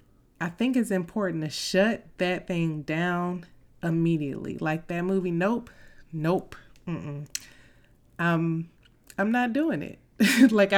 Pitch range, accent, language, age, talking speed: 155-190 Hz, American, English, 20-39, 120 wpm